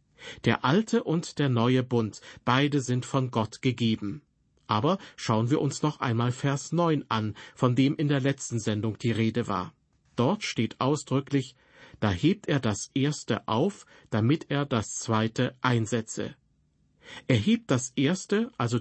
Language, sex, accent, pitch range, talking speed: German, male, German, 115-140 Hz, 155 wpm